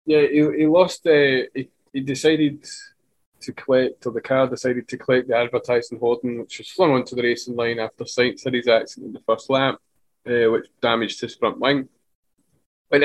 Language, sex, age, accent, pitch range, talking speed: English, male, 20-39, British, 120-140 Hz, 190 wpm